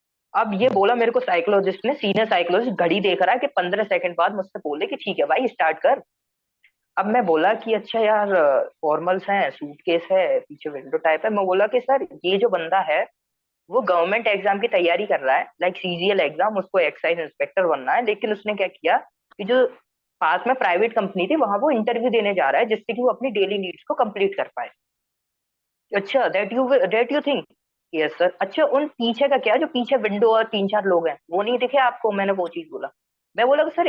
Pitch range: 180-245 Hz